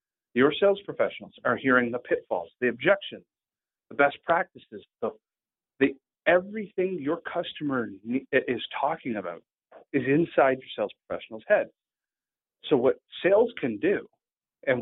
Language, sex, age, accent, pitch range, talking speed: English, male, 40-59, American, 125-205 Hz, 130 wpm